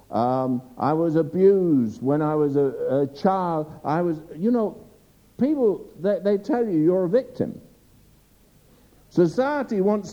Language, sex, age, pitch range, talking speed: English, male, 60-79, 180-255 Hz, 140 wpm